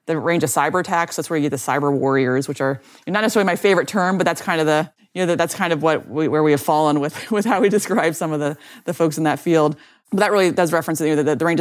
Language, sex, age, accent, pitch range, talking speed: English, female, 30-49, American, 150-180 Hz, 300 wpm